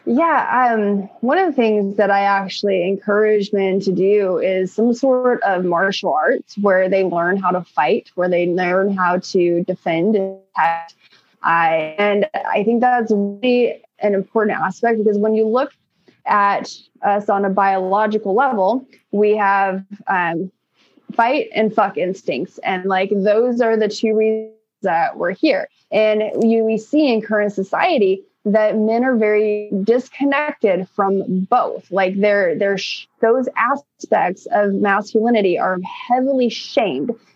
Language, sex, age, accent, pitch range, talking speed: English, female, 20-39, American, 195-235 Hz, 145 wpm